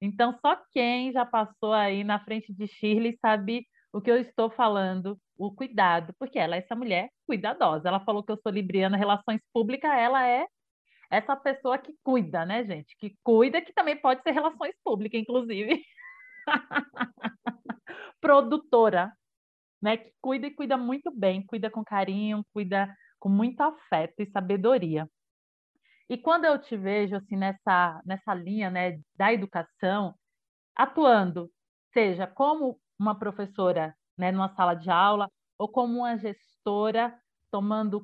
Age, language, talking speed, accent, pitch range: 30-49, Portuguese, 145 wpm, Brazilian, 195-255 Hz